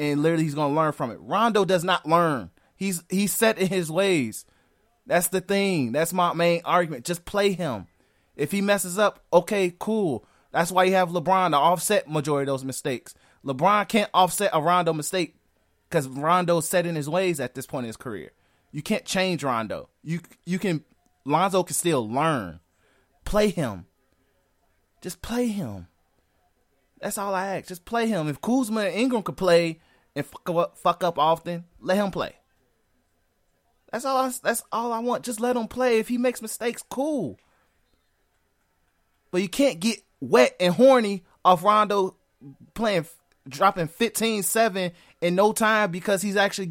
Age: 20-39